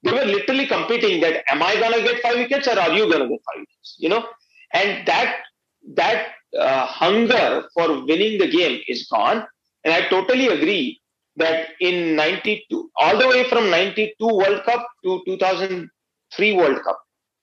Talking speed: 185 wpm